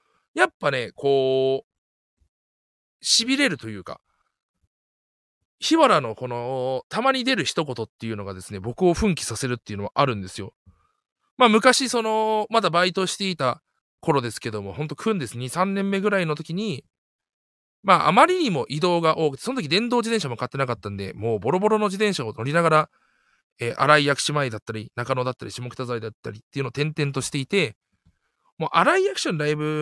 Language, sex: Japanese, male